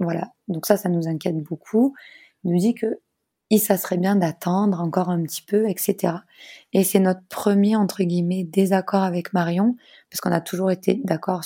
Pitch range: 170-195 Hz